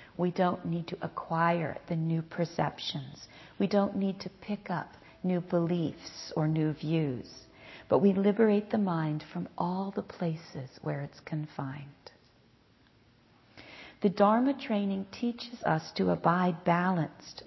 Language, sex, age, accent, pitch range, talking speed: English, female, 50-69, American, 150-195 Hz, 135 wpm